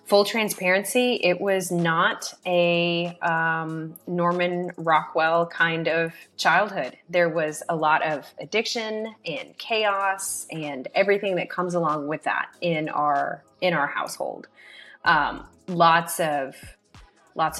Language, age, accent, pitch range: English, 20-39, American, 160-190 Hz